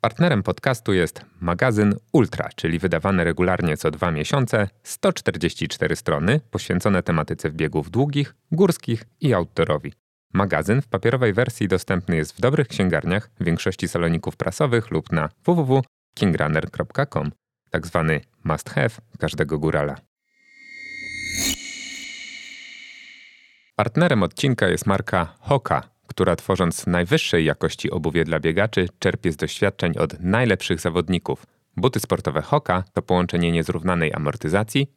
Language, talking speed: Polish, 115 wpm